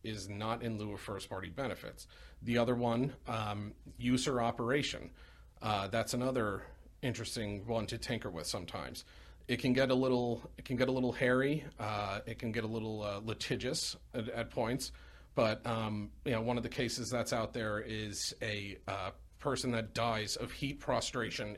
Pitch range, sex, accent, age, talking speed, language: 105-125 Hz, male, American, 40-59, 185 wpm, English